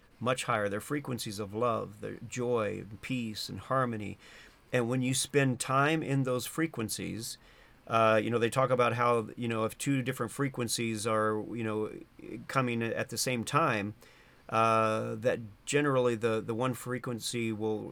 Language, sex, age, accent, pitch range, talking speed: English, male, 40-59, American, 110-130 Hz, 165 wpm